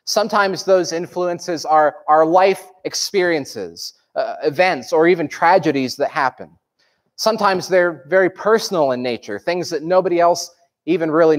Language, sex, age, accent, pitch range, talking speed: English, male, 30-49, American, 150-190 Hz, 135 wpm